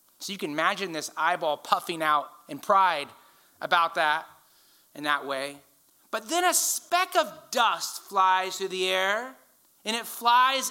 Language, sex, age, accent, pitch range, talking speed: English, male, 30-49, American, 165-250 Hz, 155 wpm